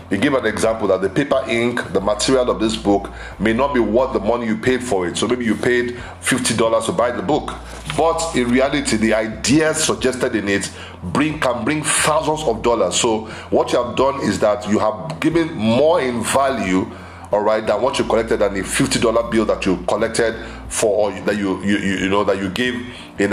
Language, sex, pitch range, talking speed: English, male, 100-130 Hz, 210 wpm